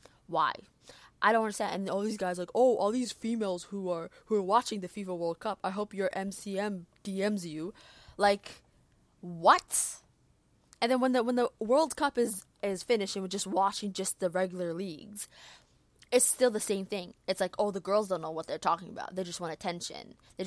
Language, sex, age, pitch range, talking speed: English, female, 20-39, 195-260 Hz, 210 wpm